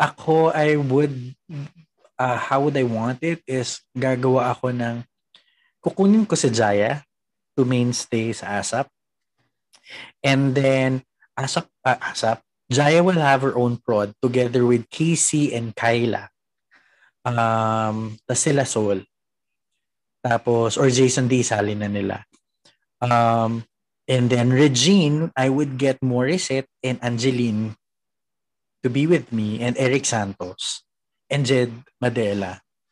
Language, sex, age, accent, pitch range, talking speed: Filipino, male, 20-39, native, 120-155 Hz, 120 wpm